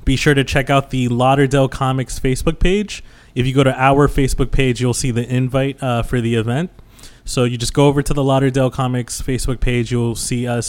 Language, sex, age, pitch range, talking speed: English, male, 20-39, 120-135 Hz, 220 wpm